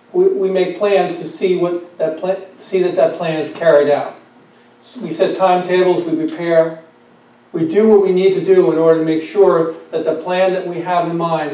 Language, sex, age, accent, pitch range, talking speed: English, male, 40-59, American, 160-185 Hz, 220 wpm